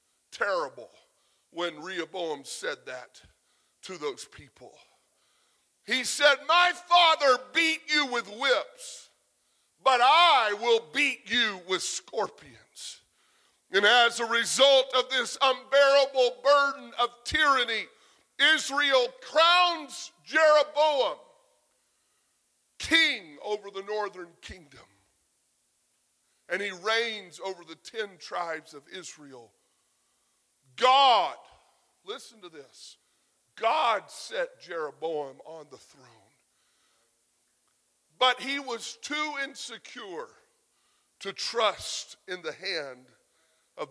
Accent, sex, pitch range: American, female, 185-290 Hz